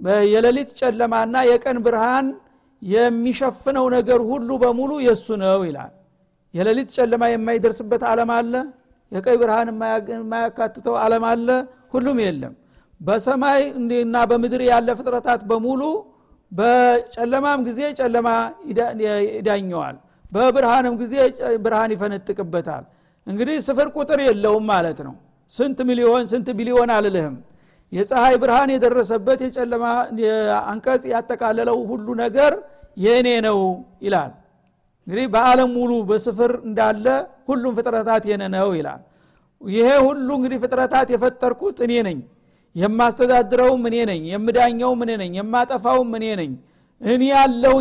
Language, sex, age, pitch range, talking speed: Amharic, male, 60-79, 225-255 Hz, 90 wpm